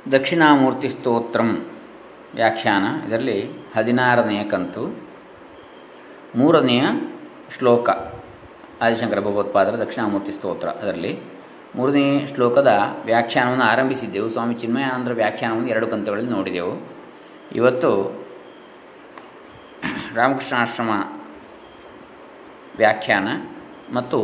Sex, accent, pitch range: male, native, 105-125 Hz